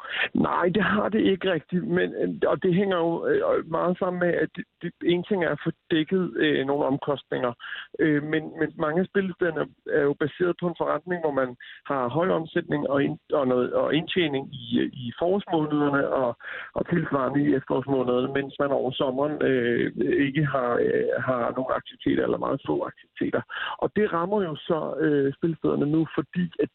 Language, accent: Danish, native